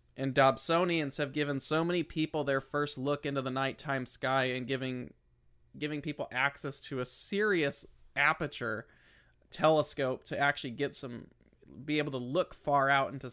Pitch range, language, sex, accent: 130-150 Hz, English, male, American